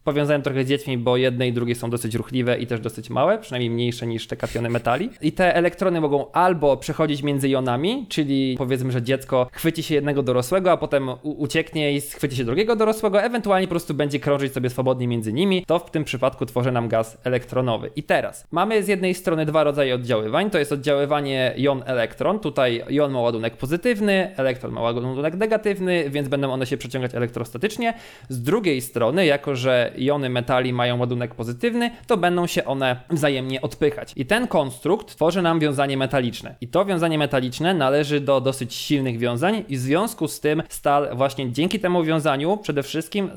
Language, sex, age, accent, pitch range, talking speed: Polish, male, 20-39, native, 125-160 Hz, 185 wpm